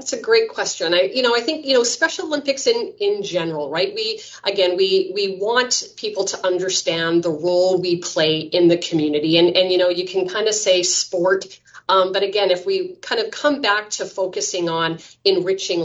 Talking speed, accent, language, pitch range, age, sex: 210 wpm, American, English, 165-230 Hz, 30-49, female